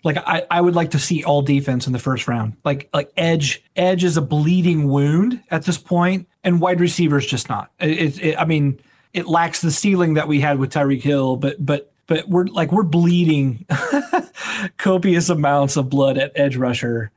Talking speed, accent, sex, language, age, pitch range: 205 wpm, American, male, English, 30-49, 140-170 Hz